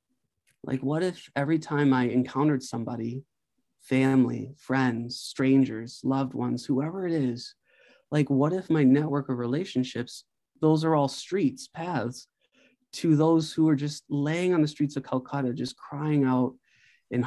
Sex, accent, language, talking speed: male, American, English, 150 wpm